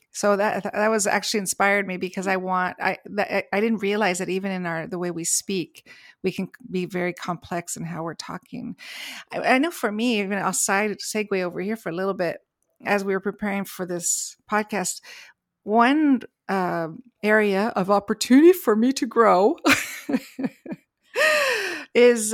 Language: English